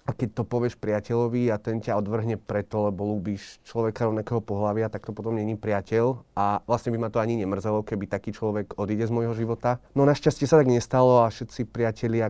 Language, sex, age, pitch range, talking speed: Slovak, male, 30-49, 105-120 Hz, 205 wpm